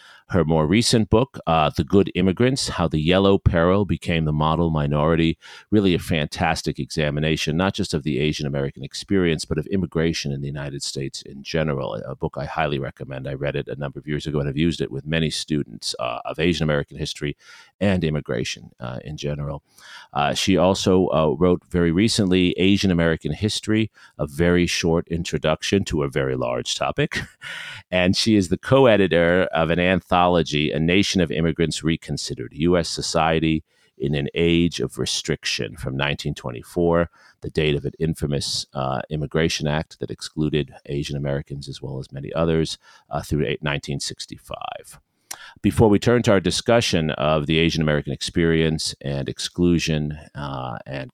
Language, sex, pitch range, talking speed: English, male, 75-90 Hz, 165 wpm